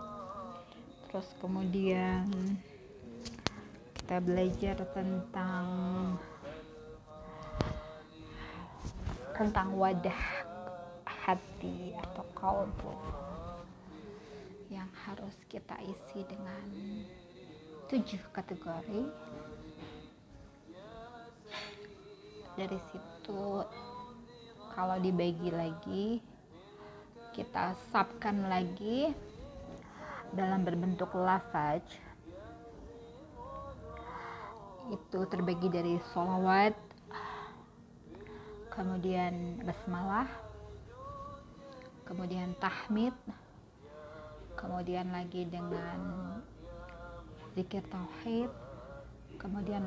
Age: 20-39